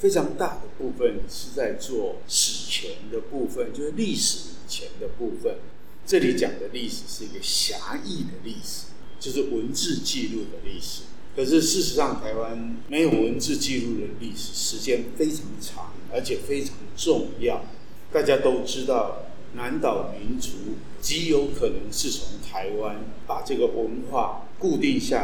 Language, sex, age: Chinese, male, 50-69